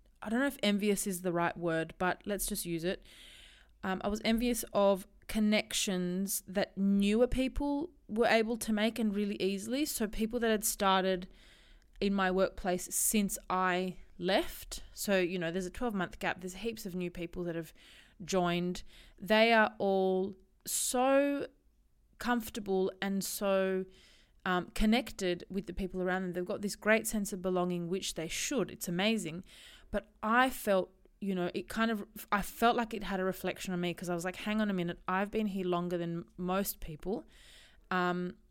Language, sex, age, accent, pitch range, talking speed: English, female, 20-39, Australian, 185-215 Hz, 180 wpm